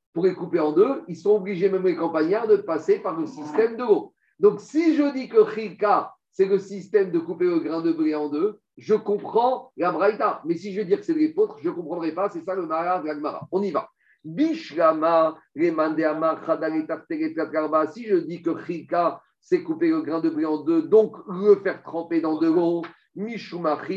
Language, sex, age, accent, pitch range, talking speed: French, male, 50-69, French, 160-230 Hz, 195 wpm